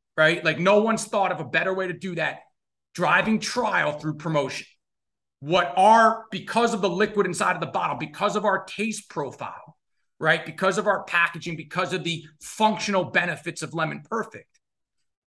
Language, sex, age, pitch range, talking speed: English, male, 30-49, 155-190 Hz, 175 wpm